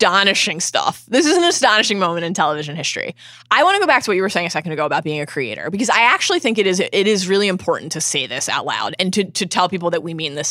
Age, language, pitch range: 20-39, English, 170-250 Hz